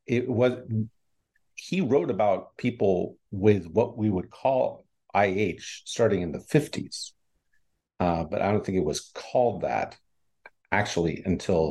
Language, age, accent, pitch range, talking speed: English, 50-69, American, 90-120 Hz, 140 wpm